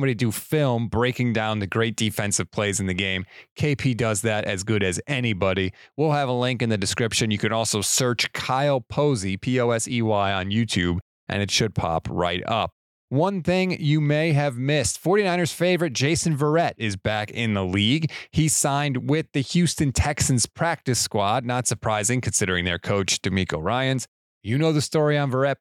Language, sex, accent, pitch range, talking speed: English, male, American, 105-140 Hz, 180 wpm